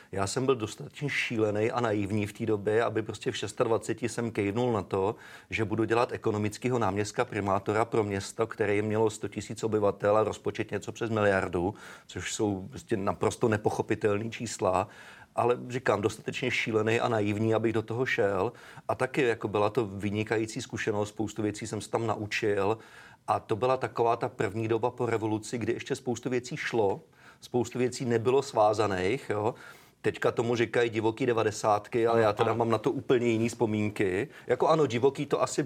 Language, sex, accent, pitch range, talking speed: Czech, male, native, 105-120 Hz, 175 wpm